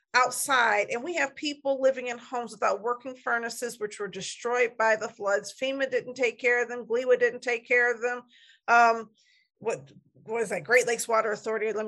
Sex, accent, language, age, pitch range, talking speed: female, American, English, 50-69, 220-265 Hz, 195 wpm